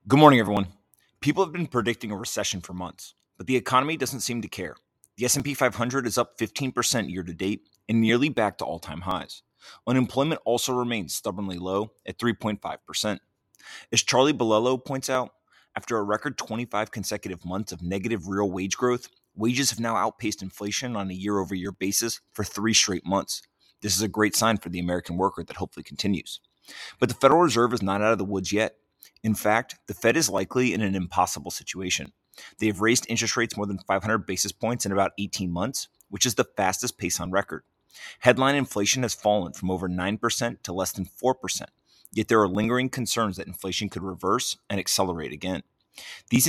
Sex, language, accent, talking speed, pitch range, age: male, English, American, 185 wpm, 95-120 Hz, 30-49